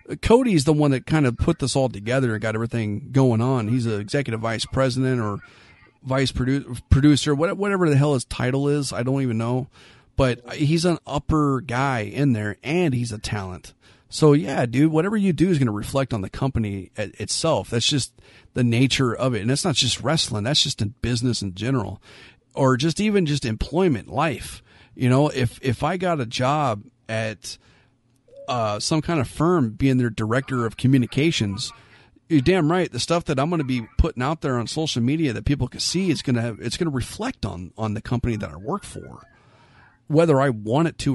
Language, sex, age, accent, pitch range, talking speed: English, male, 40-59, American, 115-150 Hz, 205 wpm